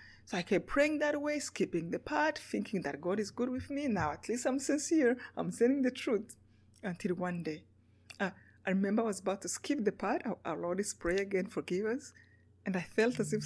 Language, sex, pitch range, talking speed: English, female, 180-255 Hz, 225 wpm